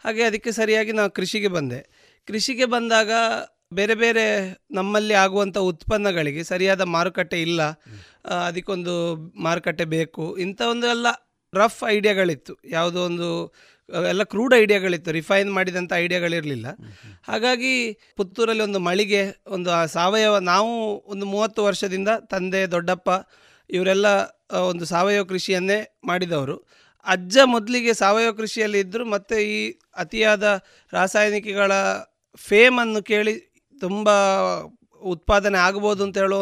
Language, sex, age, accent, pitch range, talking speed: Kannada, male, 30-49, native, 180-220 Hz, 105 wpm